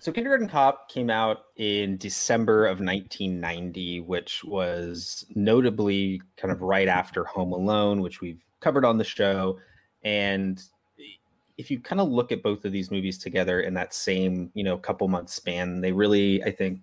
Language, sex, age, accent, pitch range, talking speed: English, male, 30-49, American, 90-105 Hz, 170 wpm